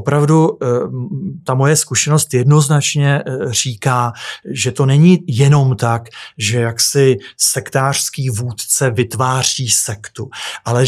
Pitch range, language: 120-140 Hz, Czech